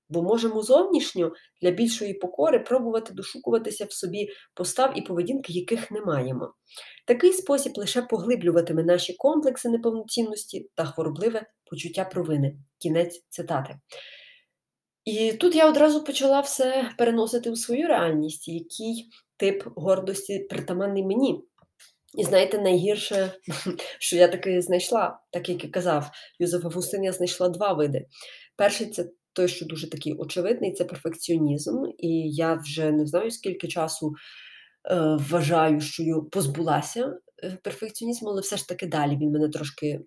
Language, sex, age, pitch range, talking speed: Ukrainian, female, 20-39, 170-230 Hz, 135 wpm